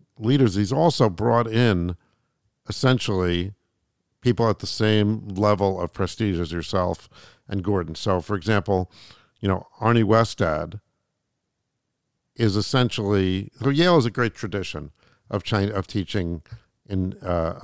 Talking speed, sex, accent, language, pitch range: 130 wpm, male, American, English, 95-120 Hz